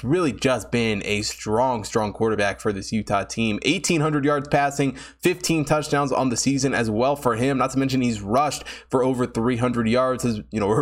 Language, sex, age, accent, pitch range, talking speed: English, male, 20-39, American, 120-145 Hz, 195 wpm